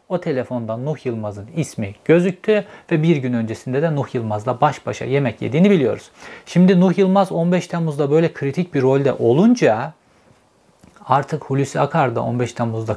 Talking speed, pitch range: 155 wpm, 120-165 Hz